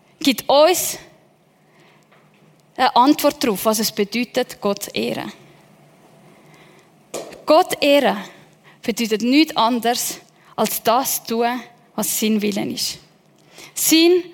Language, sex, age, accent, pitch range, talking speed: German, female, 10-29, Swiss, 220-290 Hz, 105 wpm